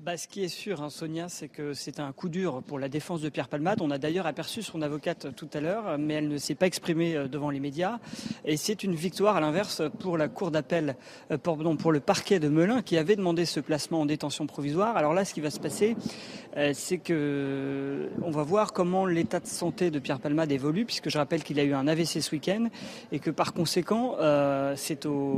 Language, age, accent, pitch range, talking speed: French, 40-59, French, 150-185 Hz, 225 wpm